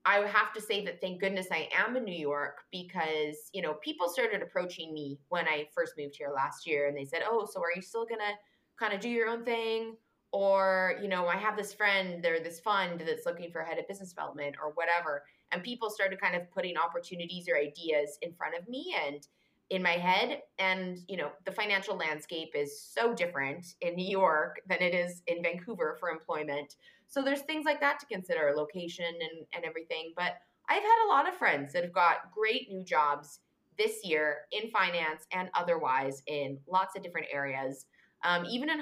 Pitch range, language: 160-225 Hz, English